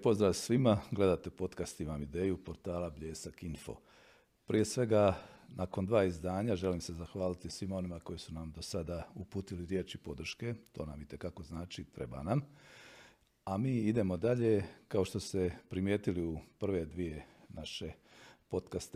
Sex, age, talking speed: male, 40-59, 145 wpm